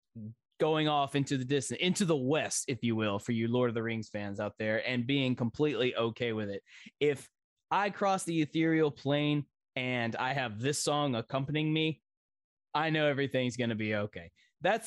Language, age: English, 20-39